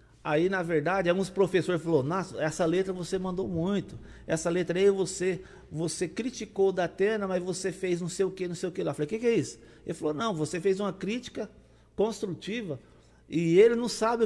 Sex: male